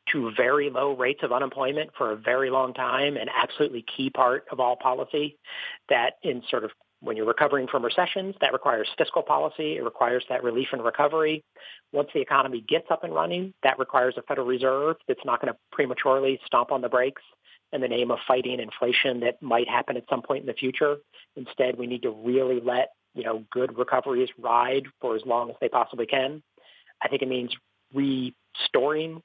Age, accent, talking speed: 40-59, American, 195 wpm